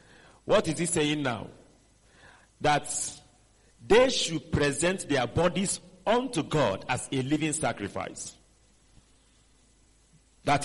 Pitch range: 135-190 Hz